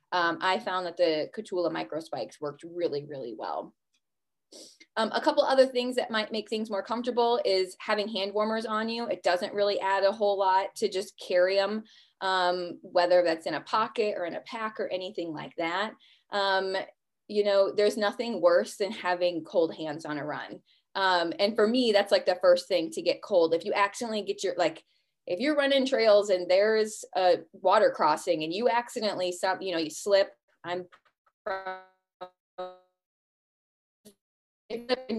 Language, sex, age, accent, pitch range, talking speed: English, female, 20-39, American, 180-220 Hz, 175 wpm